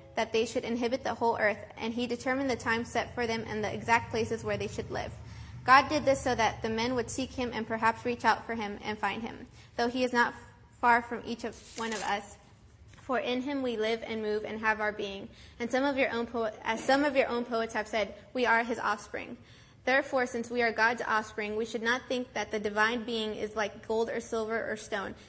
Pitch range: 215-245 Hz